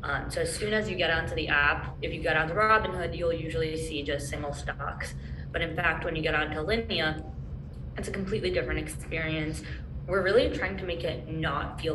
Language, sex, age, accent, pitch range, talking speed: English, female, 20-39, American, 150-170 Hz, 210 wpm